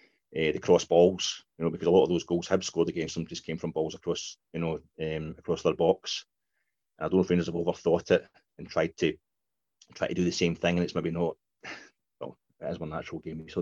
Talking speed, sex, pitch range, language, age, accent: 250 wpm, male, 85-95 Hz, English, 30-49, British